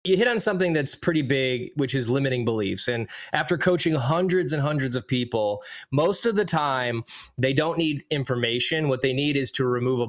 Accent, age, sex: American, 20-39, male